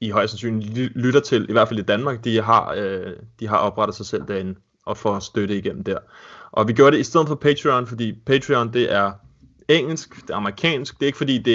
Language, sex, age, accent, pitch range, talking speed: Danish, male, 20-39, native, 105-125 Hz, 230 wpm